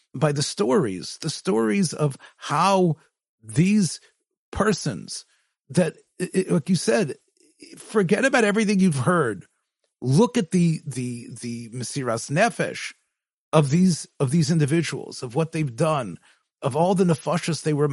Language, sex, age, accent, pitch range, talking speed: English, male, 40-59, American, 140-180 Hz, 135 wpm